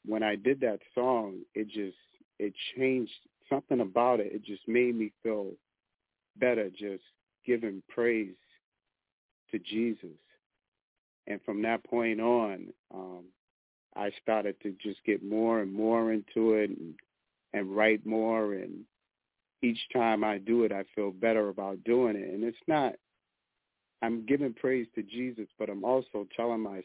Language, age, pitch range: English, 40-59, 100-115 Hz